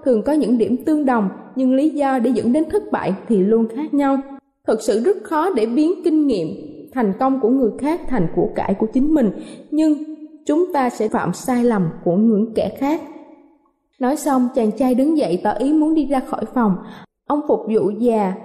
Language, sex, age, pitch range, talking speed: Vietnamese, female, 20-39, 220-300 Hz, 210 wpm